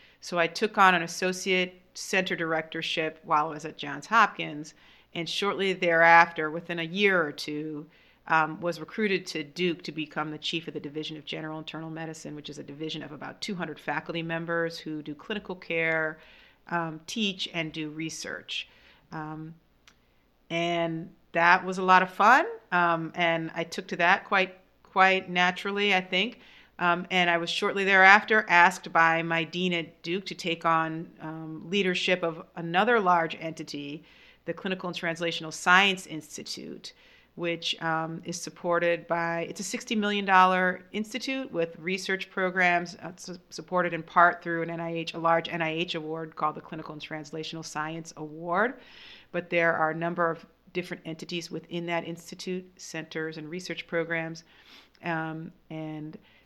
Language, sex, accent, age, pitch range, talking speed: English, female, American, 40-59, 160-185 Hz, 160 wpm